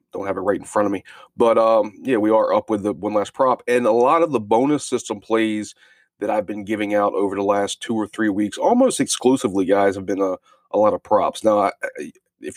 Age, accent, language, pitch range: 30-49, American, English, 105-135 Hz